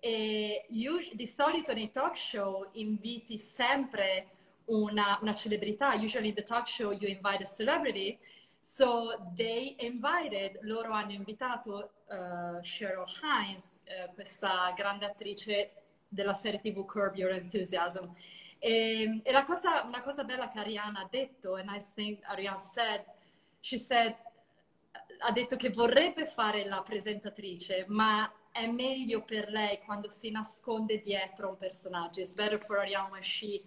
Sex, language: female, Italian